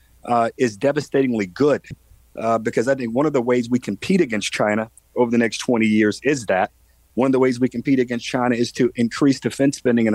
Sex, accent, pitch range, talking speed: male, American, 115-140 Hz, 220 wpm